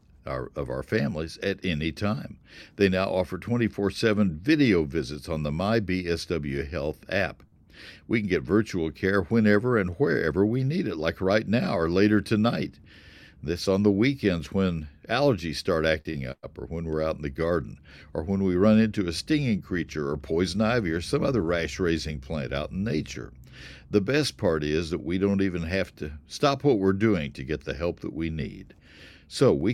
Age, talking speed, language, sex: 60-79, 190 wpm, English, male